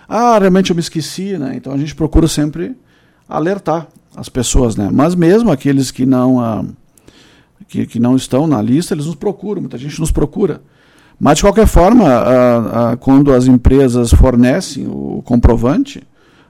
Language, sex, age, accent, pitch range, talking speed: Portuguese, male, 50-69, Brazilian, 130-175 Hz, 155 wpm